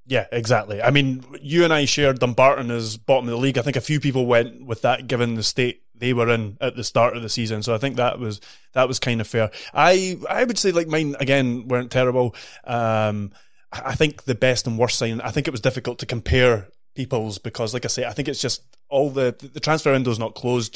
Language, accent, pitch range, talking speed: English, British, 115-135 Hz, 245 wpm